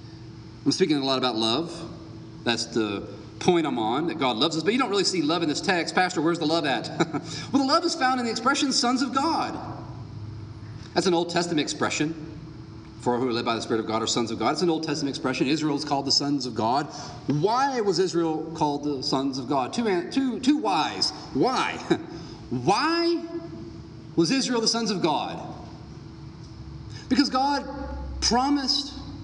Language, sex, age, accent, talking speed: English, male, 40-59, American, 185 wpm